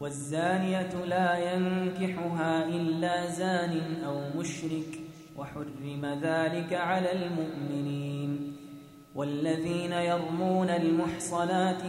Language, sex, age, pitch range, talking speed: Arabic, male, 20-39, 160-180 Hz, 70 wpm